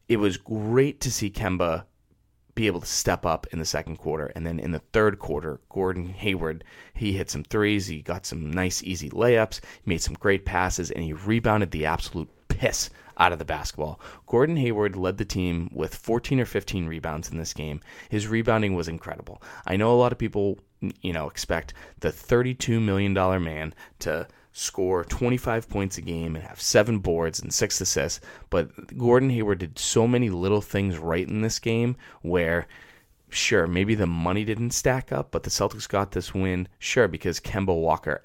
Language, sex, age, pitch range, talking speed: English, male, 20-39, 85-110 Hz, 190 wpm